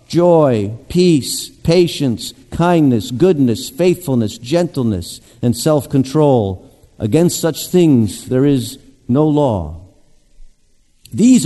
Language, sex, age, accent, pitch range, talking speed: English, male, 50-69, American, 125-170 Hz, 90 wpm